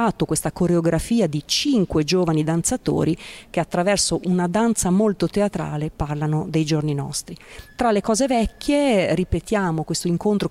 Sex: female